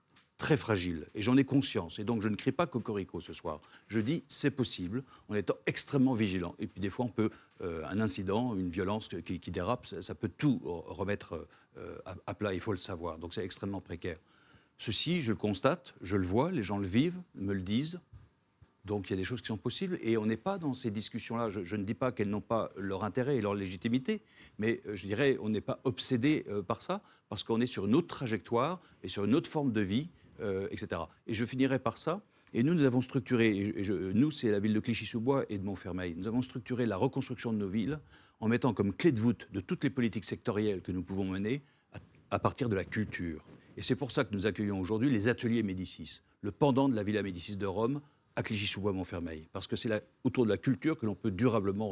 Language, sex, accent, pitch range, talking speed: French, male, French, 100-130 Hz, 235 wpm